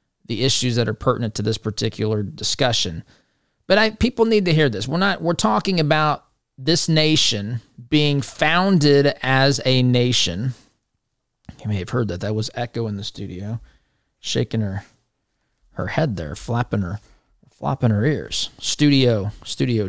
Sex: male